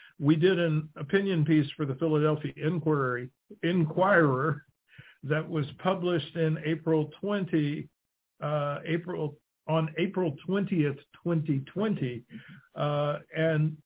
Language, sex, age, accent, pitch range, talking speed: English, male, 50-69, American, 135-160 Hz, 95 wpm